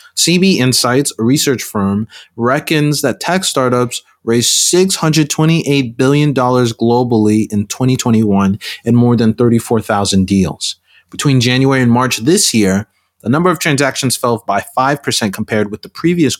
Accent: American